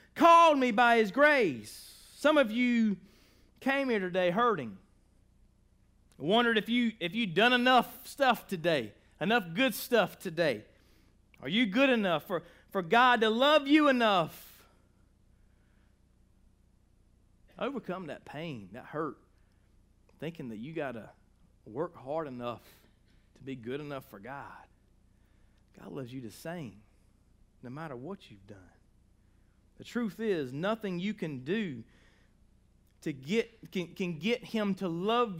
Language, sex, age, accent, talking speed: English, male, 40-59, American, 135 wpm